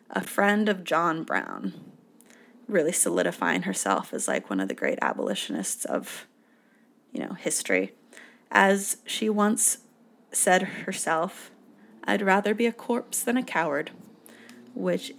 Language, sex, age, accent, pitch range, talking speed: English, female, 20-39, American, 185-250 Hz, 130 wpm